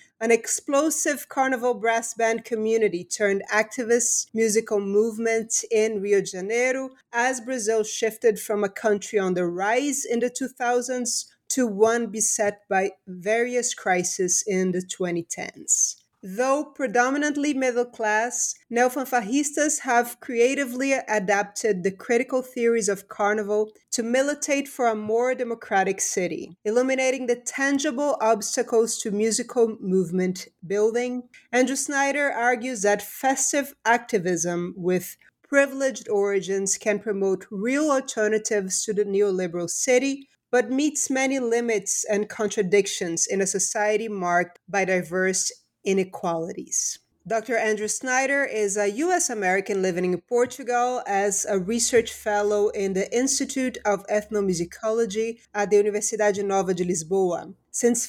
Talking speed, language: 125 wpm, English